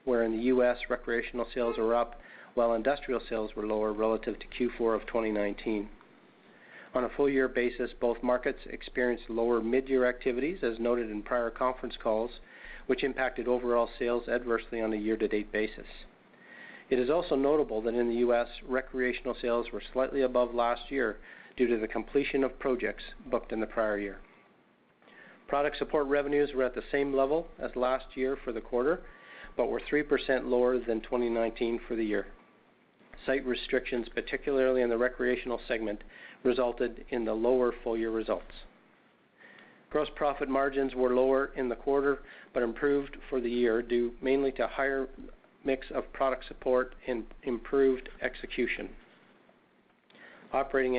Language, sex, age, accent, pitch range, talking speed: English, male, 40-59, American, 115-130 Hz, 155 wpm